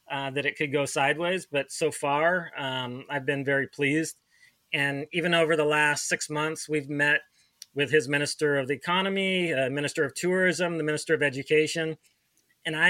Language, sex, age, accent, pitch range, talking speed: English, male, 30-49, American, 140-160 Hz, 180 wpm